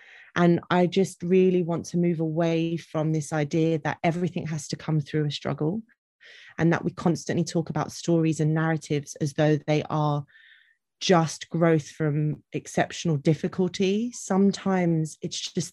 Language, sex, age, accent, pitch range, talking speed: English, female, 30-49, British, 150-180 Hz, 155 wpm